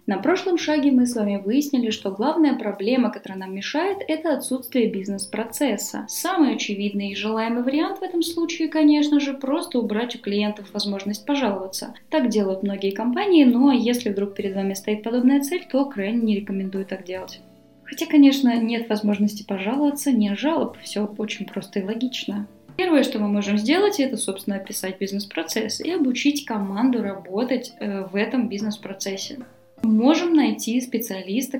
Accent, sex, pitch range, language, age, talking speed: native, female, 205-265 Hz, Russian, 20-39, 155 wpm